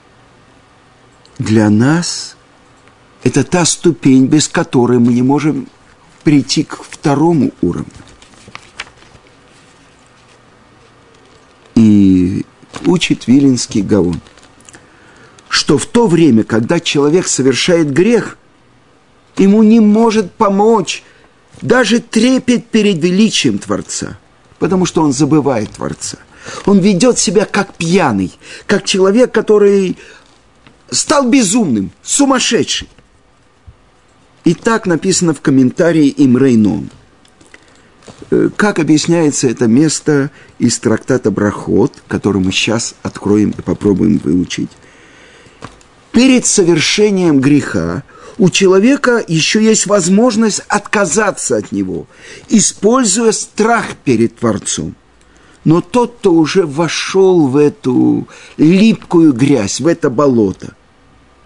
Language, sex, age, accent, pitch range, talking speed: Russian, male, 50-69, native, 130-210 Hz, 95 wpm